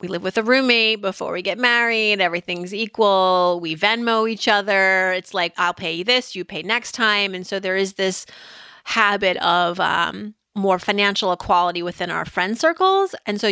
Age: 30-49